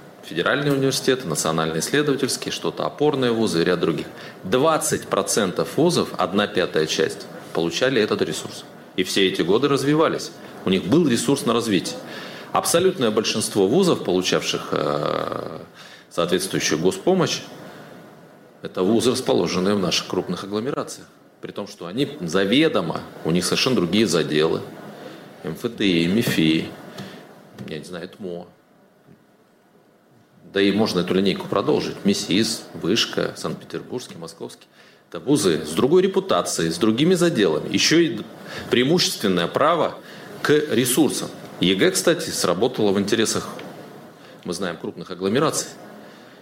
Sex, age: male, 30-49